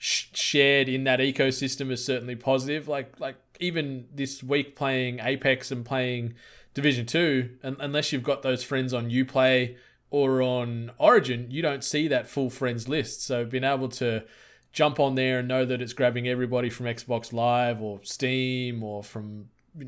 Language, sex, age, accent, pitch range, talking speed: English, male, 20-39, Australian, 120-135 Hz, 175 wpm